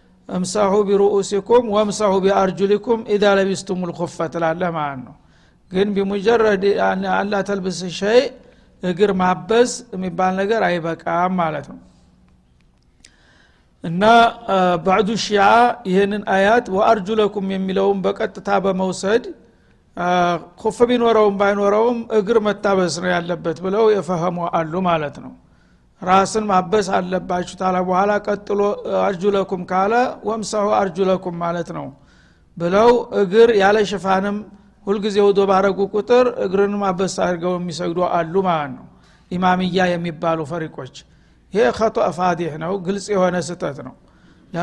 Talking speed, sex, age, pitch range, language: 100 wpm, male, 60-79, 175-205 Hz, Amharic